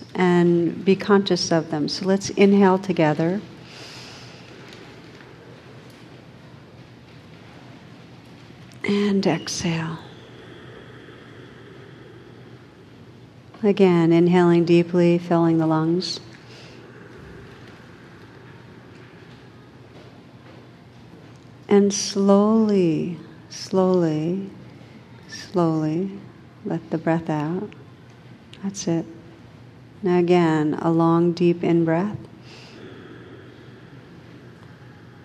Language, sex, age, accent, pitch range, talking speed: English, female, 50-69, American, 150-180 Hz, 55 wpm